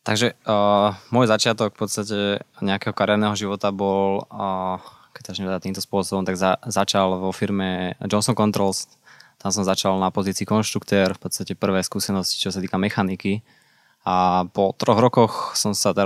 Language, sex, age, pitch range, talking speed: Slovak, male, 20-39, 95-105 Hz, 165 wpm